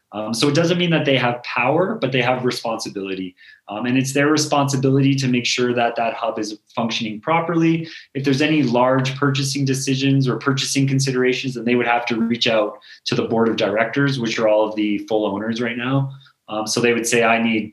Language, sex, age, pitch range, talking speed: English, male, 30-49, 110-140 Hz, 215 wpm